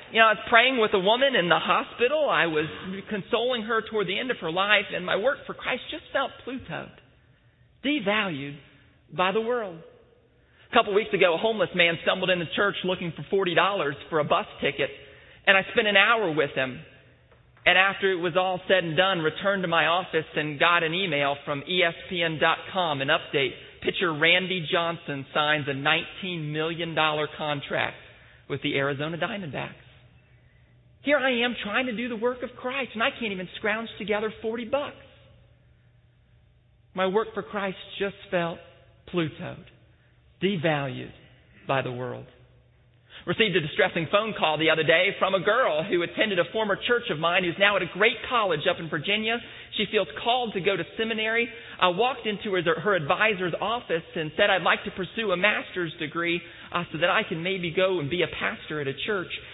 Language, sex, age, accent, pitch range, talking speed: English, male, 40-59, American, 155-205 Hz, 185 wpm